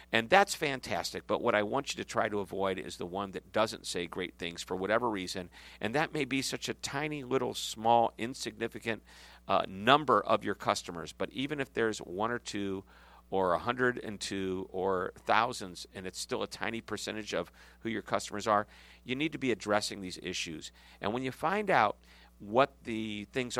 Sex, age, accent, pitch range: male, 50-69, American, 90-120 Hz